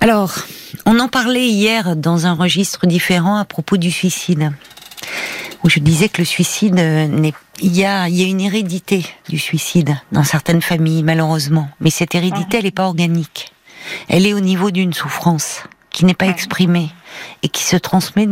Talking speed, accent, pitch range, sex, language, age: 165 wpm, French, 160-195 Hz, female, French, 50-69